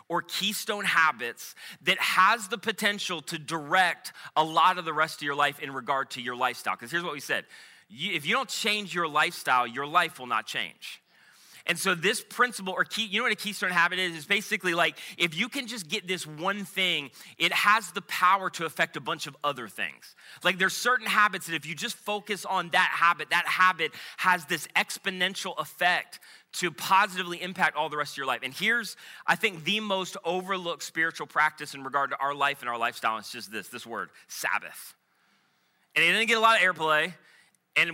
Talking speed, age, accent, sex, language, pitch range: 210 wpm, 30-49, American, male, English, 155-195 Hz